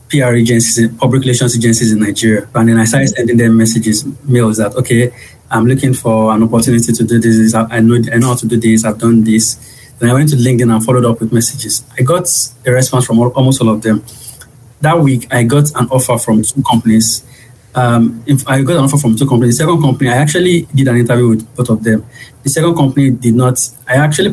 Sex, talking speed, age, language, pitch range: male, 230 wpm, 20-39, English, 115-130 Hz